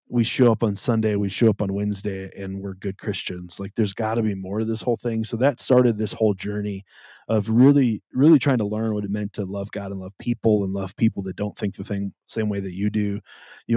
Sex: male